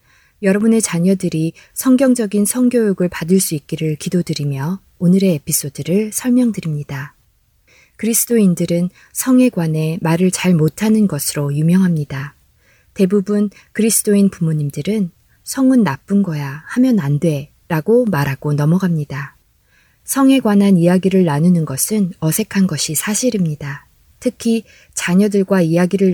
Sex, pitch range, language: female, 155-205 Hz, Korean